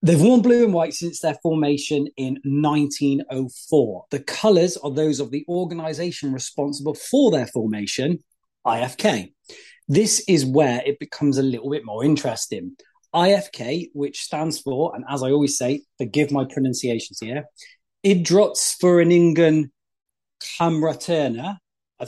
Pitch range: 135-170 Hz